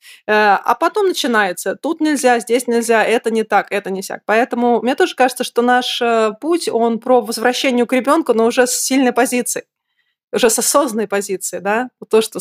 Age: 20-39